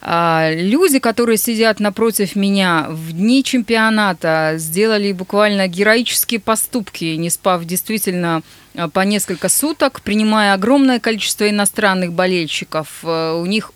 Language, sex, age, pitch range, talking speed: Russian, female, 30-49, 180-245 Hz, 110 wpm